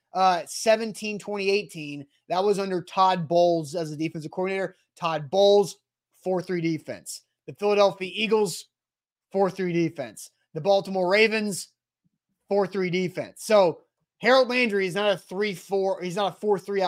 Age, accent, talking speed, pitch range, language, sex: 30-49, American, 130 wpm, 170-205 Hz, English, male